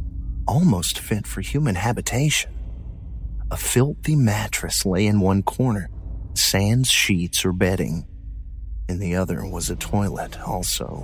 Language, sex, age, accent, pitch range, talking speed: English, male, 40-59, American, 80-105 Hz, 125 wpm